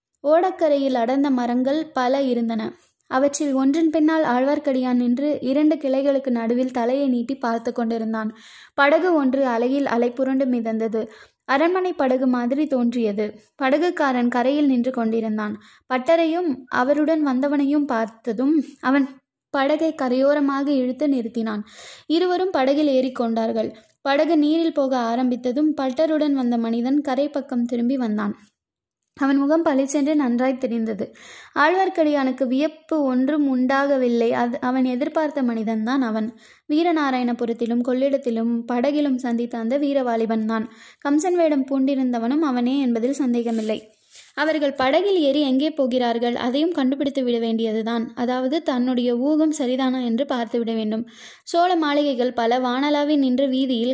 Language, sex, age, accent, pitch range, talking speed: Tamil, female, 20-39, native, 240-285 Hz, 110 wpm